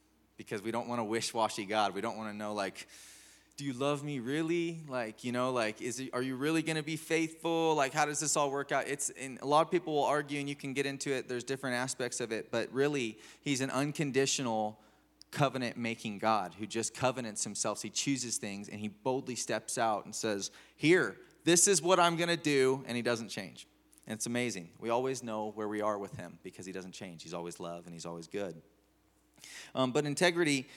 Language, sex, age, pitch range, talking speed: English, male, 20-39, 110-145 Hz, 225 wpm